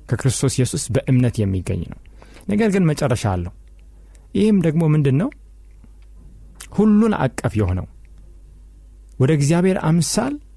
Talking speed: 100 wpm